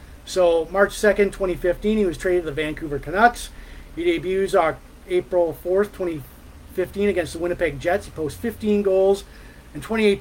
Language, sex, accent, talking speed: English, male, American, 160 wpm